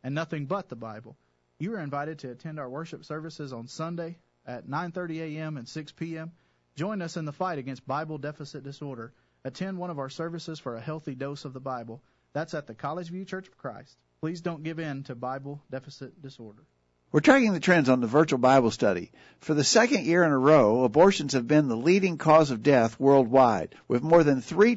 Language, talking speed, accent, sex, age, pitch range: English, 210 wpm, American, male, 40-59, 130-160 Hz